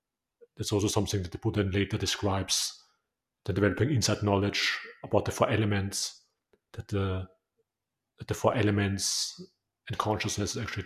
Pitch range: 100-110 Hz